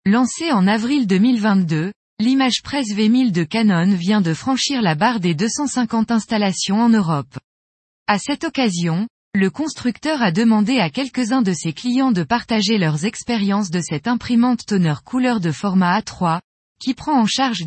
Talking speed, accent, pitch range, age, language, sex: 155 wpm, French, 185-245 Hz, 20-39, French, female